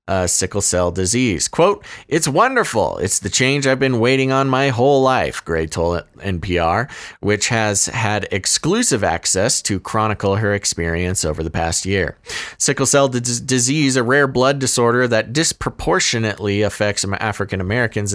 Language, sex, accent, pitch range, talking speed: English, male, American, 100-135 Hz, 150 wpm